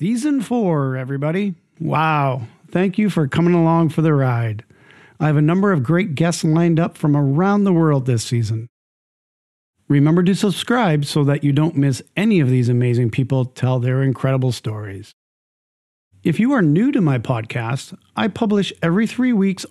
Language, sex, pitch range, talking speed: English, male, 130-170 Hz, 170 wpm